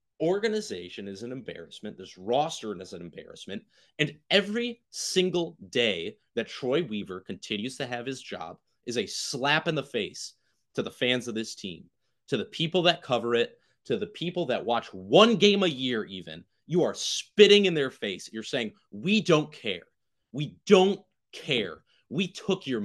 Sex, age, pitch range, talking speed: male, 30-49, 125-205 Hz, 175 wpm